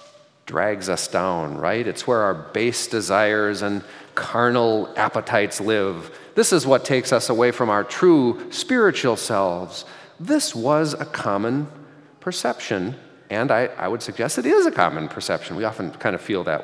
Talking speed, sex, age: 160 wpm, male, 40-59